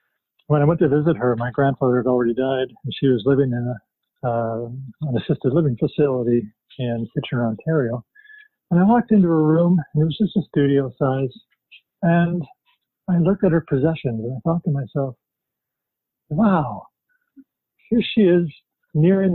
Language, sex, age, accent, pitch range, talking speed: English, male, 50-69, American, 135-200 Hz, 170 wpm